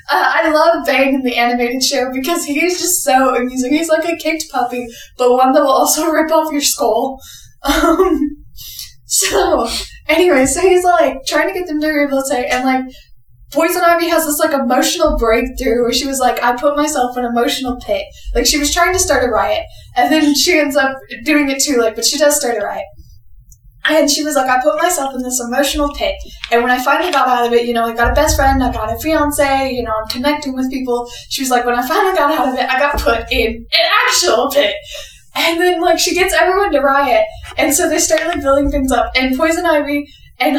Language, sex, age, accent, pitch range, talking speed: English, female, 10-29, American, 245-310 Hz, 230 wpm